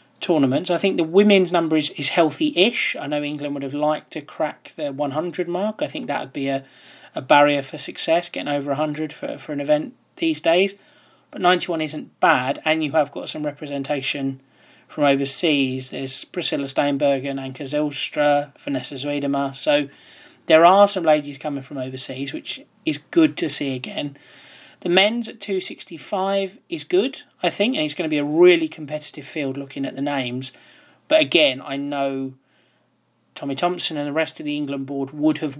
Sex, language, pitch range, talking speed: male, English, 140-180 Hz, 180 wpm